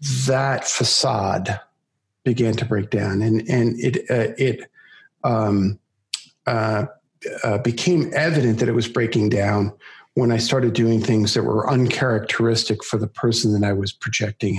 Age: 50-69